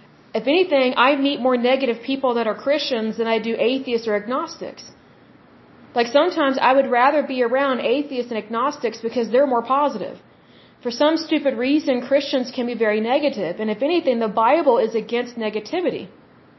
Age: 40-59